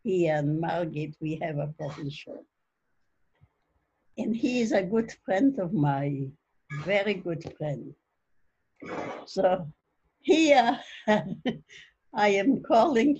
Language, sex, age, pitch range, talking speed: English, female, 60-79, 165-270 Hz, 105 wpm